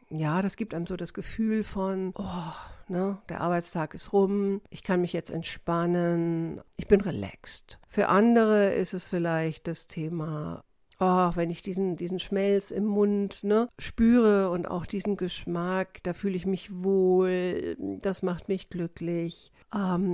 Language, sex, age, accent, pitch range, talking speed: German, female, 50-69, German, 165-195 Hz, 160 wpm